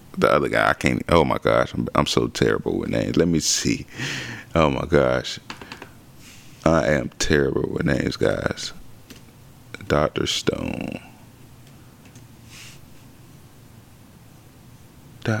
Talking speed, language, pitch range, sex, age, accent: 120 wpm, English, 80-125 Hz, male, 30-49, American